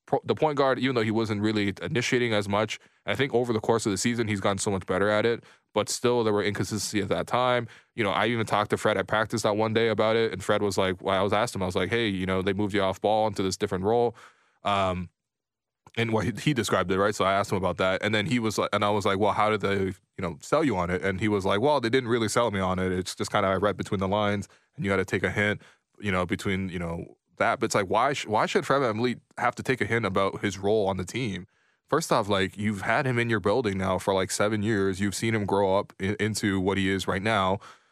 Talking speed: 295 wpm